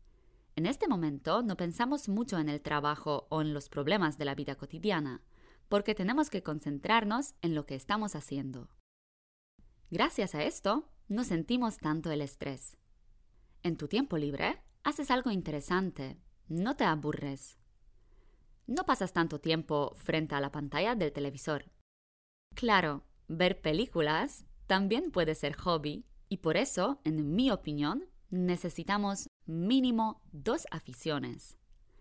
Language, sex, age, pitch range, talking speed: Polish, female, 20-39, 140-195 Hz, 135 wpm